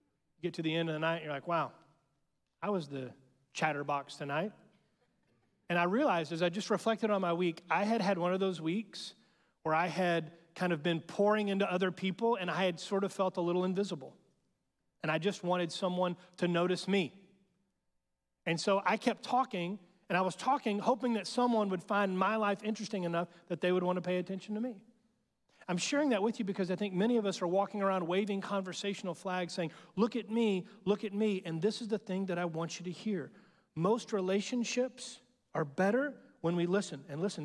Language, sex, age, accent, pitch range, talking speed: English, male, 30-49, American, 165-205 Hz, 210 wpm